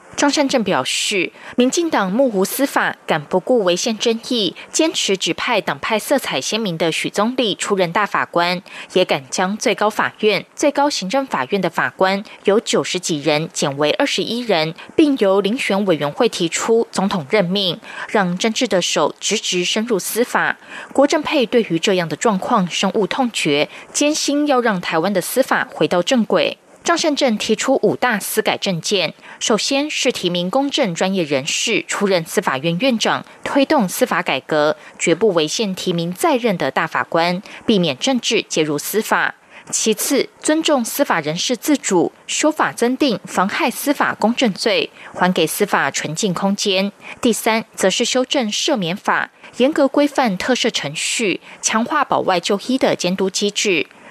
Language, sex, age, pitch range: German, female, 20-39, 180-255 Hz